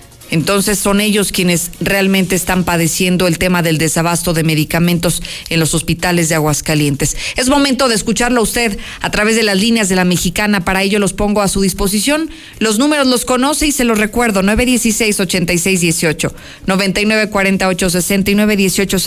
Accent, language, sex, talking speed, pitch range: Mexican, Spanish, female, 165 wpm, 180-225 Hz